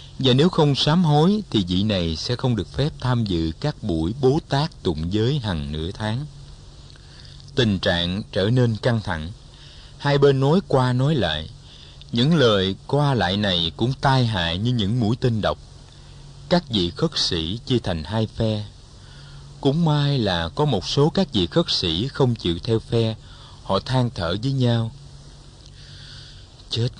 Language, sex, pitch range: Vietnamese, male, 100-140 Hz